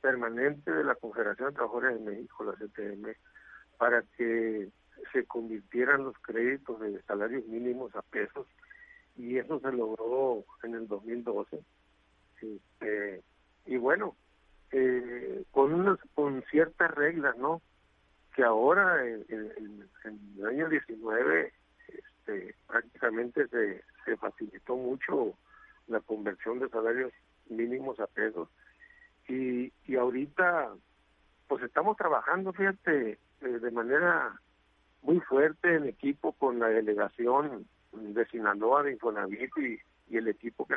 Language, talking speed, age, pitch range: Spanish, 120 wpm, 60-79, 105-145 Hz